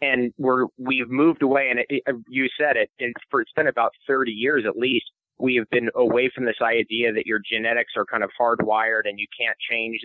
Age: 30-49